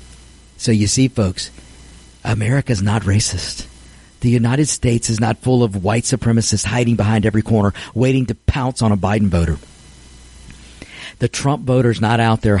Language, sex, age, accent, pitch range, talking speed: English, male, 50-69, American, 90-145 Hz, 155 wpm